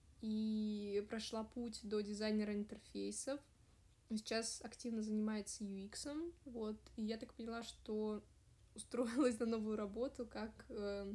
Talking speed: 115 wpm